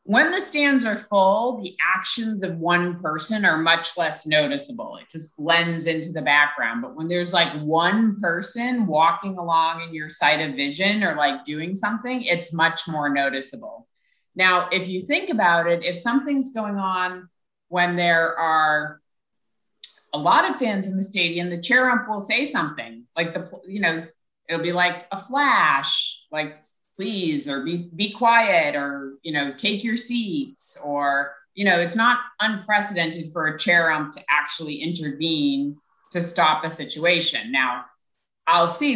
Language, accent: English, American